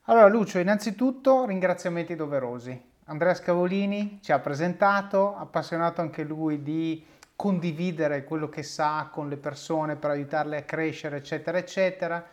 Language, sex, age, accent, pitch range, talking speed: Italian, male, 30-49, native, 140-180 Hz, 130 wpm